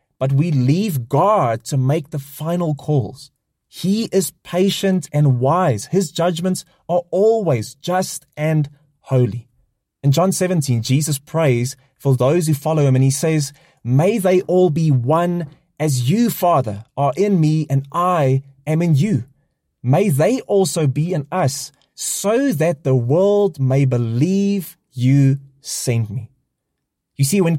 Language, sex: English, male